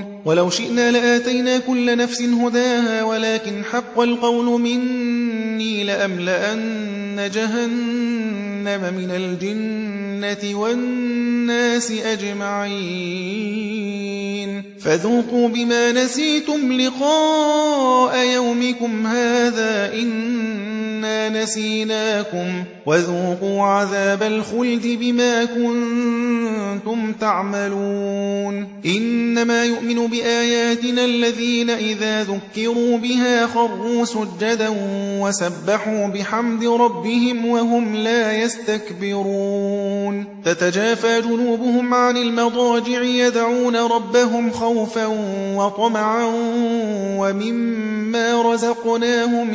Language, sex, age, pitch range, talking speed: Persian, male, 30-49, 200-235 Hz, 75 wpm